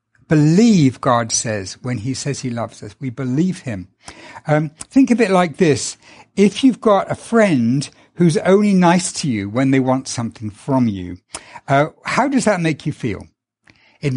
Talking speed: 180 wpm